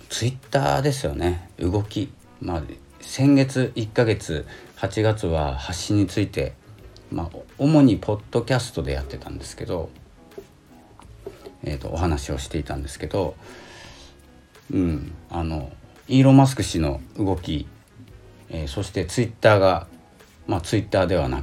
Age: 50-69